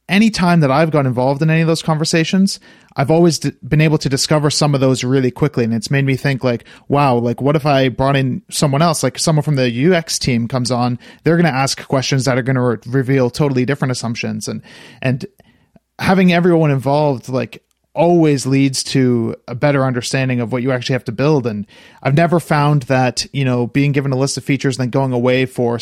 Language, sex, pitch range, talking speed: English, male, 125-145 Hz, 220 wpm